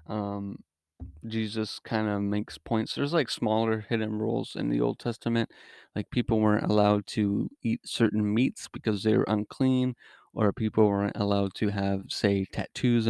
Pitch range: 100-110 Hz